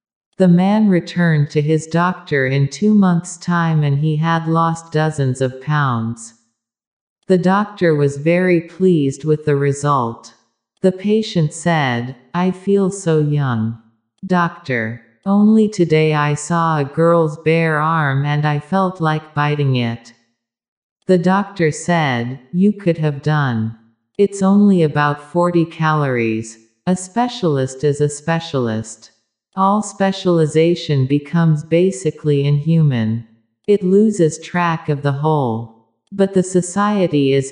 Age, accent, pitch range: 50-69, American, 135-180 Hz